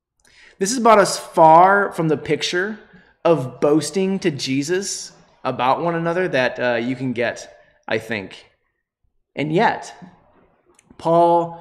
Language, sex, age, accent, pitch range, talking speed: English, male, 20-39, American, 145-180 Hz, 130 wpm